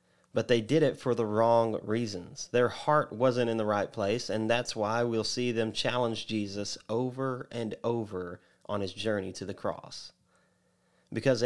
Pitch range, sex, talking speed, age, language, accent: 110-125 Hz, male, 175 wpm, 30-49, English, American